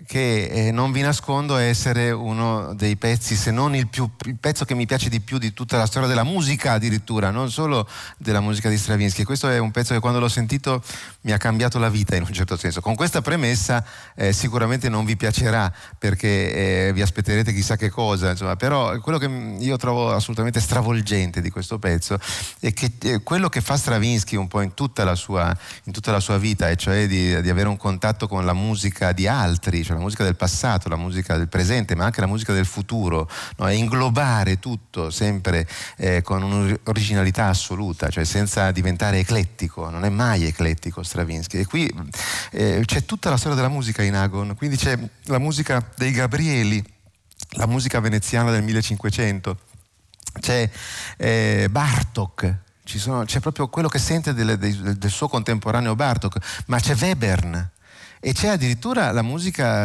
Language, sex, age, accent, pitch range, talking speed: Italian, male, 30-49, native, 95-125 Hz, 185 wpm